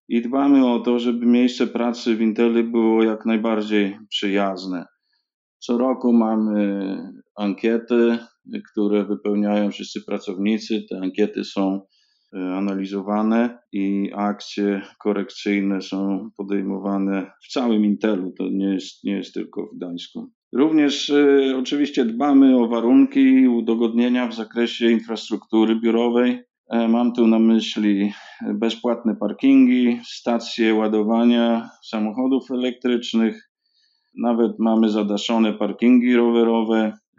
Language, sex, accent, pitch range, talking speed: Polish, male, native, 105-120 Hz, 110 wpm